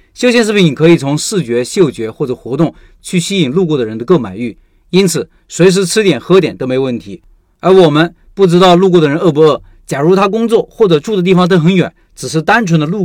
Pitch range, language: 145-190 Hz, Chinese